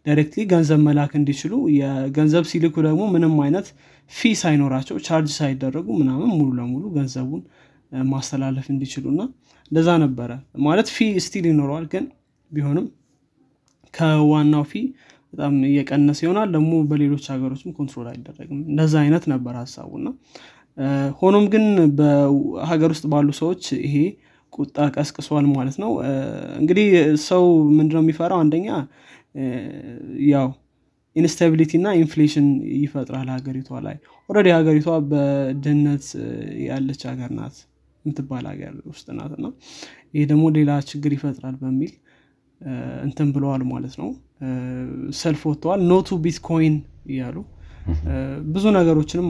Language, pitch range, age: Amharic, 135-160 Hz, 20-39